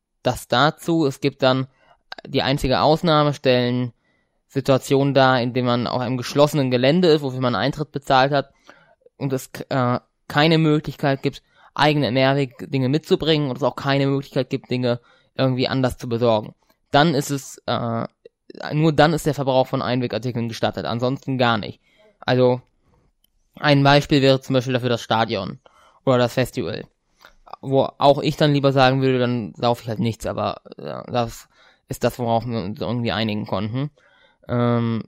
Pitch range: 125-145 Hz